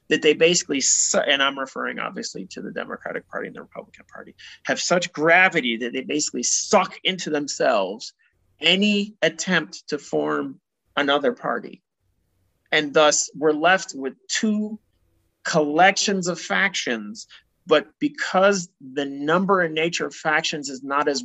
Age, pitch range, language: 30-49, 140-195 Hz, English